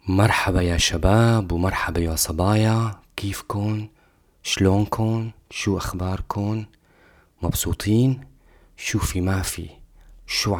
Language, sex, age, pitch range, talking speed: English, male, 20-39, 85-110 Hz, 90 wpm